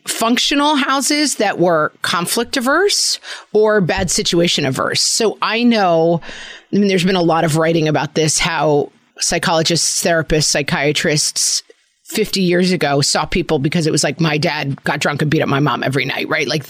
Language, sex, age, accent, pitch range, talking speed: English, female, 40-59, American, 155-200 Hz, 170 wpm